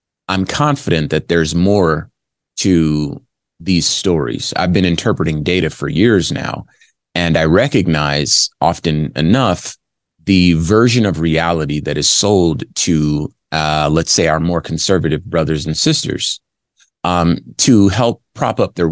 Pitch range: 80-95 Hz